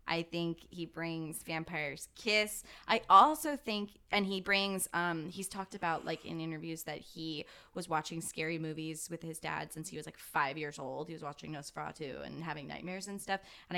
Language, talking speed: English, 205 wpm